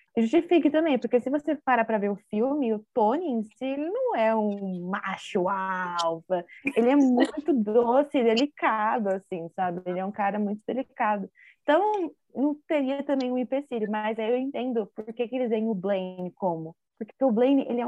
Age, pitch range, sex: 20-39, 195-245 Hz, female